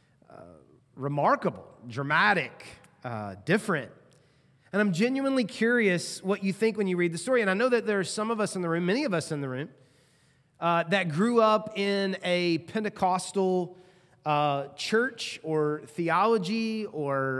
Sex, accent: male, American